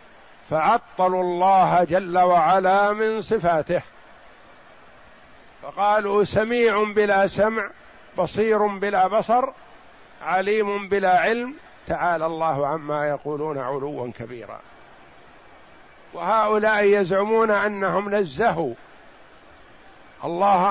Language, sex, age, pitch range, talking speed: Arabic, male, 50-69, 180-220 Hz, 80 wpm